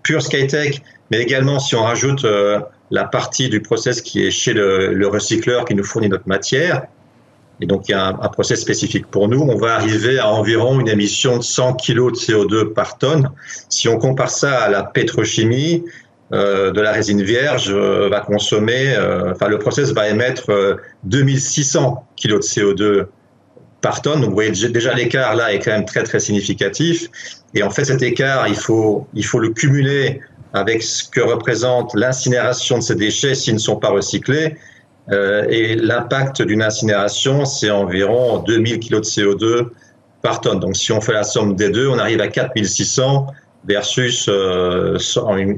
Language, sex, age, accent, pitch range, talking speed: French, male, 40-59, French, 105-130 Hz, 185 wpm